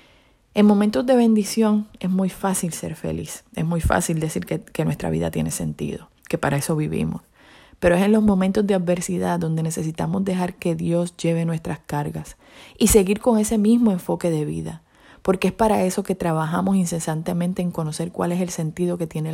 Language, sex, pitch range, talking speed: Spanish, female, 160-190 Hz, 190 wpm